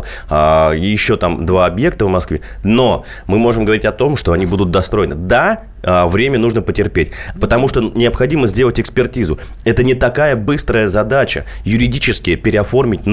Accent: native